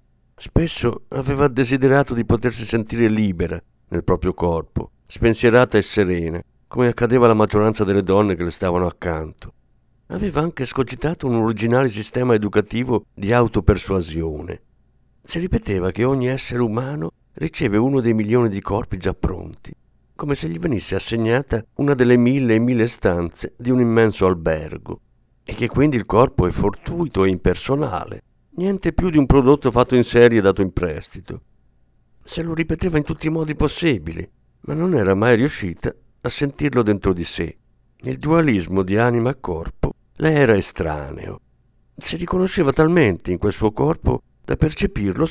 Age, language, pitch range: 50-69, Italian, 95-135 Hz